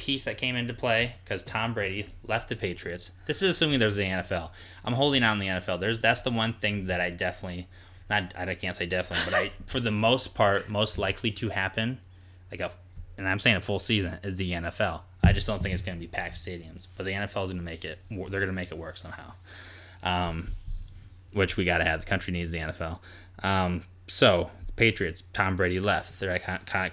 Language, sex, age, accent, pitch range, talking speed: English, male, 20-39, American, 90-105 Hz, 225 wpm